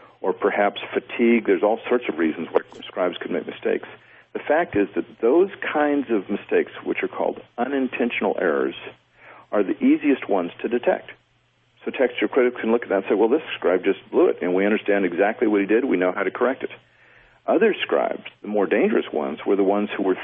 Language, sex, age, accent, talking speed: English, male, 50-69, American, 210 wpm